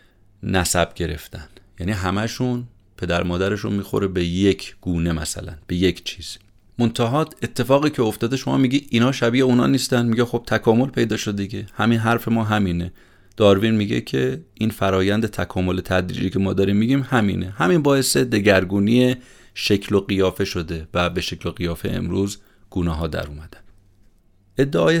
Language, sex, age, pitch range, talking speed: Persian, male, 30-49, 90-110 Hz, 155 wpm